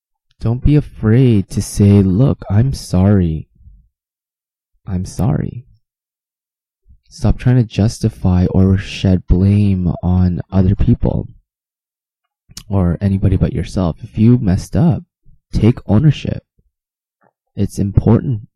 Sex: male